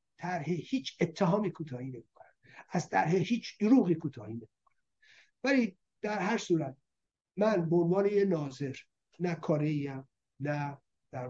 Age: 50-69